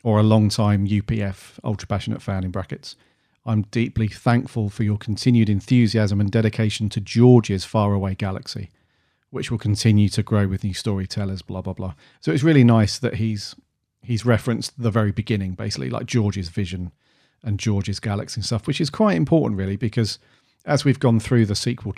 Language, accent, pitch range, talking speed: English, British, 100-125 Hz, 170 wpm